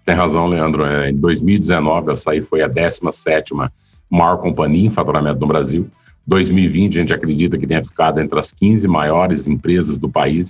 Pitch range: 85-110 Hz